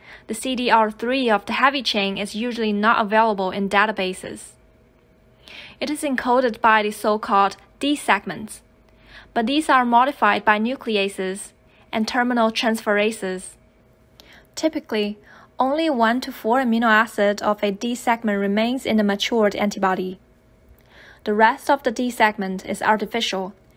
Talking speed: 125 wpm